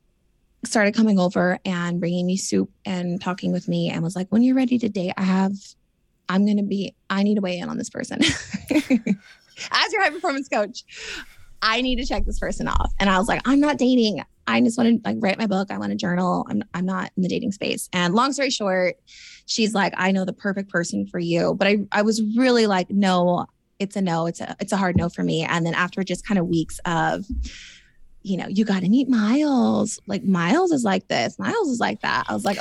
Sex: female